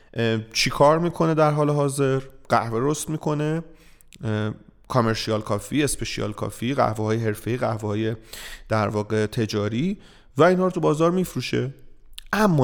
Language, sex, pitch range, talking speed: Persian, male, 115-160 Hz, 130 wpm